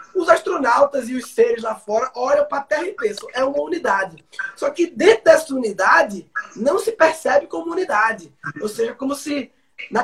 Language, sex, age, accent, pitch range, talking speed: Portuguese, male, 20-39, Brazilian, 245-290 Hz, 185 wpm